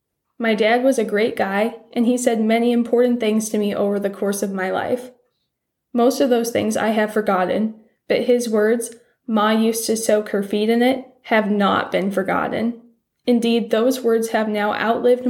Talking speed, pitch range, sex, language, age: 190 wpm, 210-240 Hz, female, English, 10-29